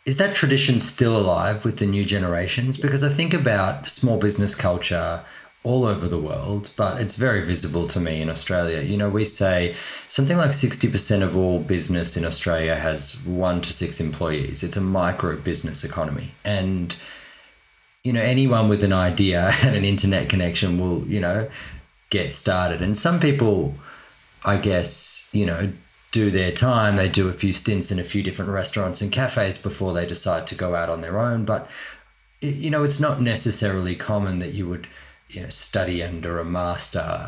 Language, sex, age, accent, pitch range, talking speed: English, male, 20-39, Australian, 85-110 Hz, 180 wpm